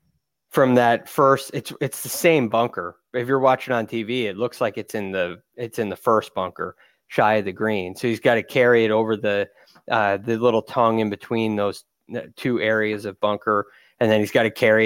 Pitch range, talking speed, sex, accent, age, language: 105-125 Hz, 215 wpm, male, American, 20-39, English